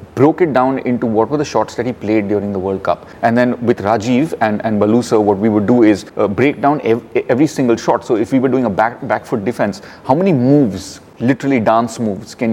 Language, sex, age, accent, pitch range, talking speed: English, male, 30-49, Indian, 110-130 Hz, 245 wpm